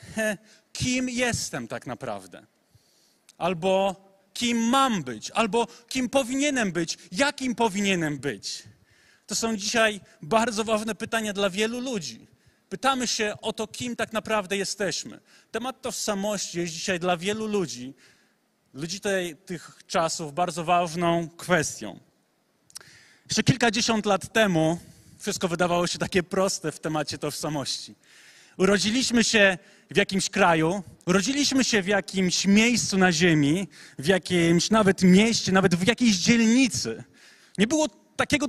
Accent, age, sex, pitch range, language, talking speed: native, 30-49, male, 180-240 Hz, Polish, 125 wpm